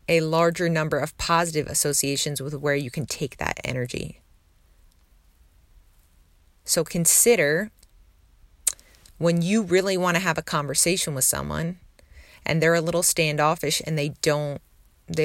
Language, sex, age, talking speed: English, female, 30-49, 130 wpm